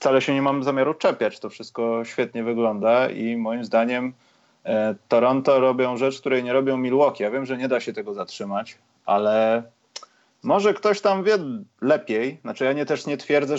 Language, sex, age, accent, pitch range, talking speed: Polish, male, 30-49, native, 115-140 Hz, 180 wpm